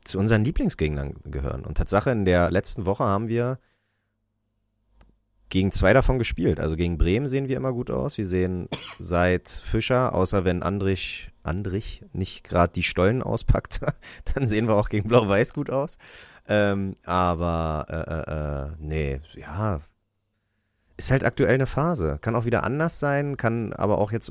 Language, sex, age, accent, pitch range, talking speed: German, male, 30-49, German, 85-105 Hz, 160 wpm